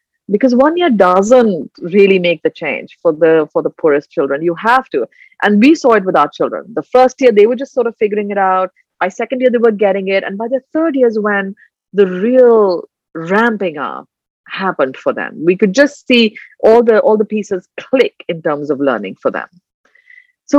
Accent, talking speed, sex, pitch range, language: Indian, 215 wpm, female, 175-245 Hz, English